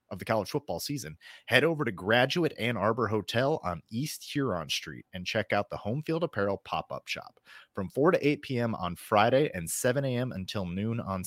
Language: English